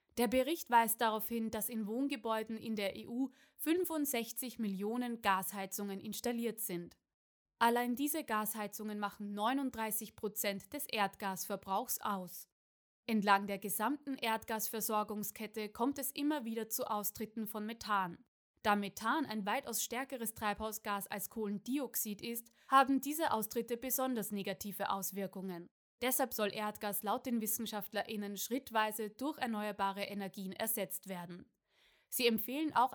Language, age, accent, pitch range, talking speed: German, 20-39, German, 205-245 Hz, 120 wpm